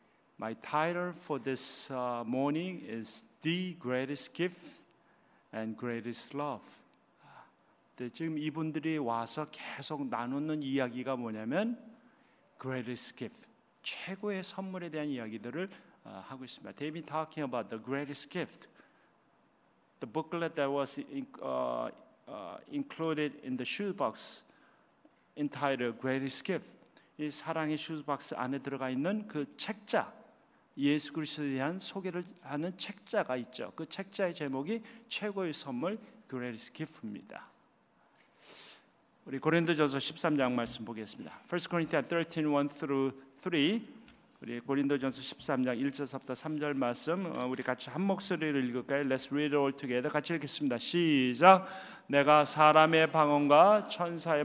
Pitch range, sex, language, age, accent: 135-165 Hz, male, Korean, 50-69, native